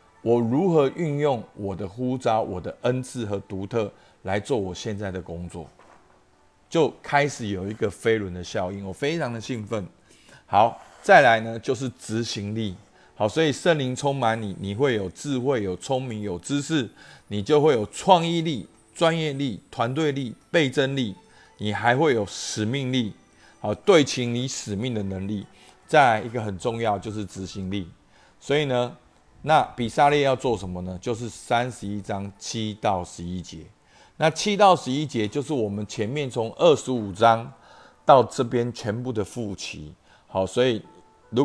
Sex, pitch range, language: male, 100-125 Hz, Chinese